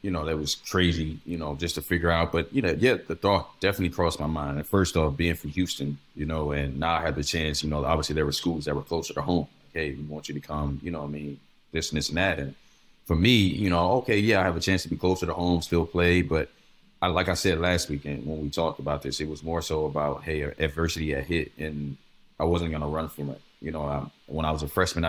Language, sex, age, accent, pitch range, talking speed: English, male, 20-39, American, 75-90 Hz, 275 wpm